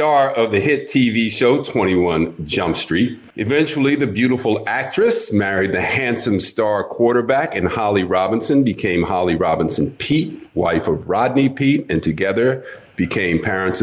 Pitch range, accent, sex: 95-120 Hz, American, male